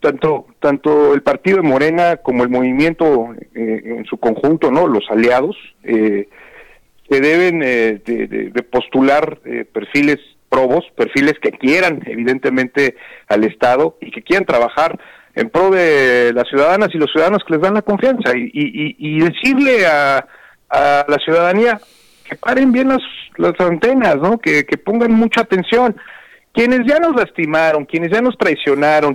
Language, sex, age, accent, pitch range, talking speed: Spanish, male, 50-69, Mexican, 130-180 Hz, 160 wpm